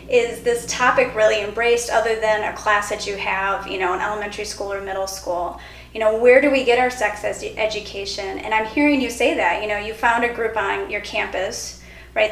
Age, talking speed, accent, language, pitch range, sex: 30-49, 220 wpm, American, English, 210-245 Hz, female